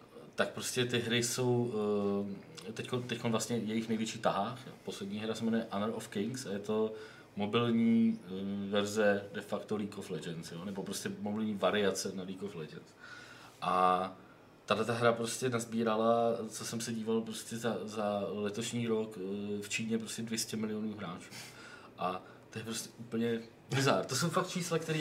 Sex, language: male, Czech